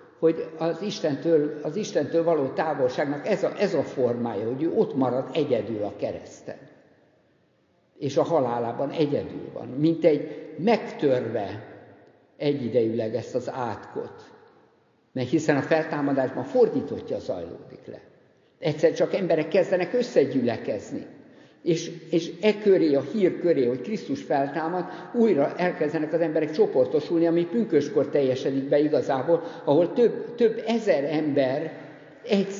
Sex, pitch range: male, 145-195 Hz